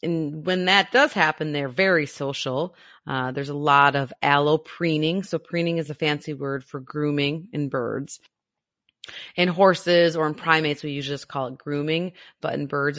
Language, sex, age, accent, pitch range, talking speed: English, female, 30-49, American, 145-185 Hz, 175 wpm